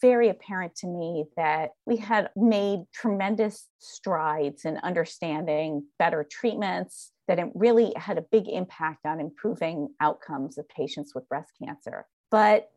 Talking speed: 135 wpm